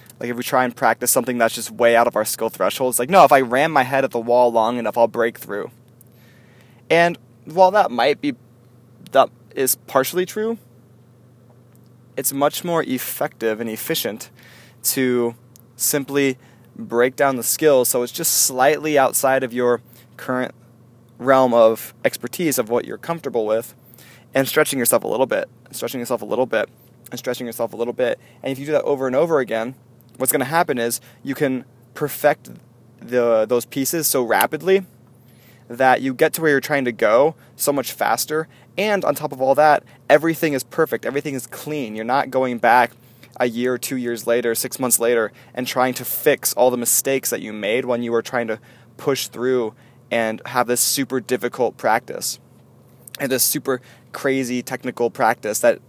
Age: 20-39